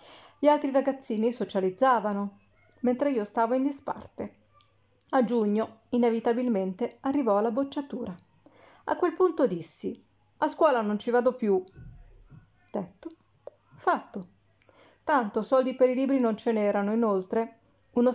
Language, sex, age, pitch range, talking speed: Italian, female, 40-59, 205-250 Hz, 120 wpm